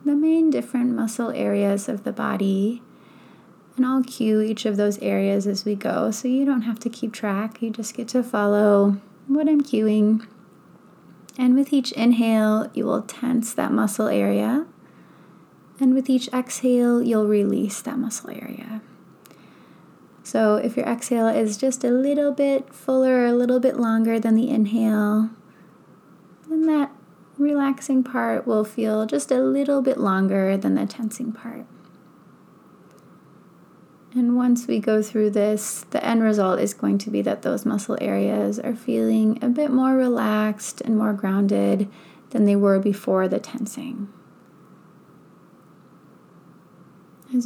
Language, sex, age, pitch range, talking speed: English, female, 20-39, 205-255 Hz, 150 wpm